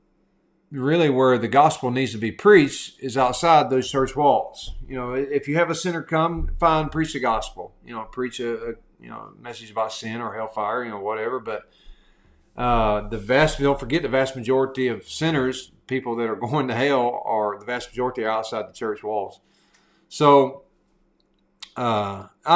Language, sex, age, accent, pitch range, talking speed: English, male, 40-59, American, 110-145 Hz, 180 wpm